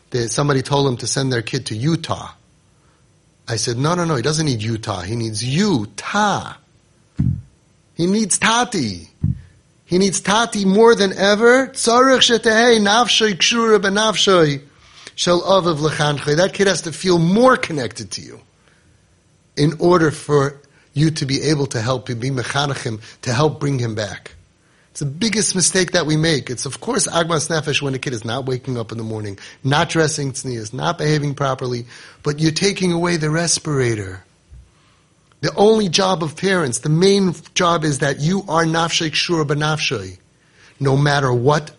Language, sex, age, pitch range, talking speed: English, male, 30-49, 130-180 Hz, 150 wpm